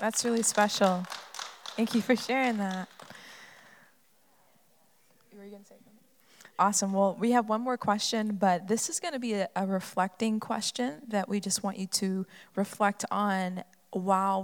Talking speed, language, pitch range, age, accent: 135 wpm, English, 180-220 Hz, 20-39, American